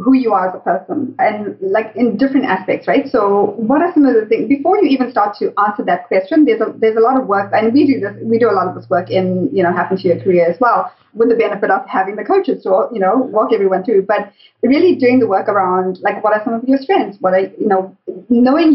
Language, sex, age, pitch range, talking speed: English, female, 20-39, 190-245 Hz, 270 wpm